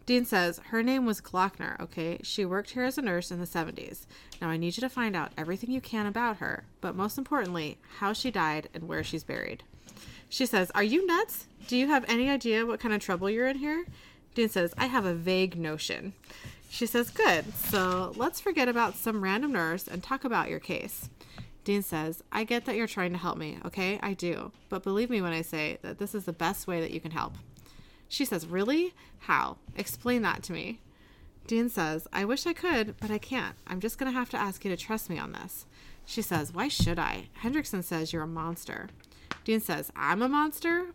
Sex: female